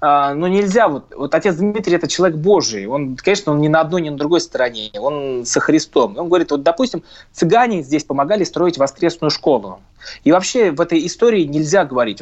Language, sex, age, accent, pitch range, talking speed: Russian, male, 20-39, native, 140-180 Hz, 185 wpm